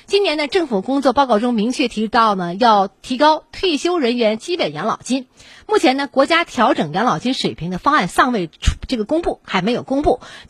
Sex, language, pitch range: female, Chinese, 195-285 Hz